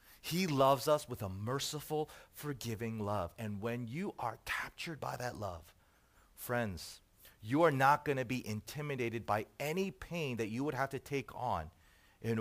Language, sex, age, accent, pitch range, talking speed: English, male, 40-59, American, 105-145 Hz, 170 wpm